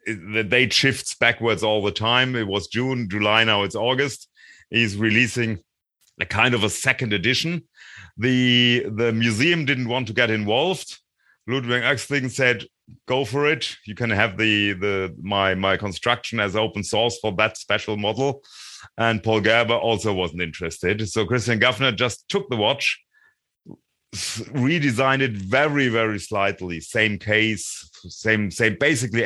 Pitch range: 105-130 Hz